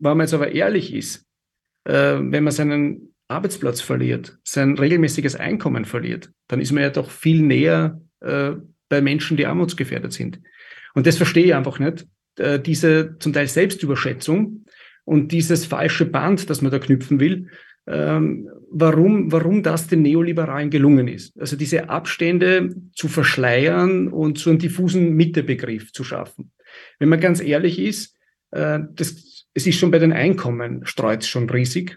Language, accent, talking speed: German, German, 150 wpm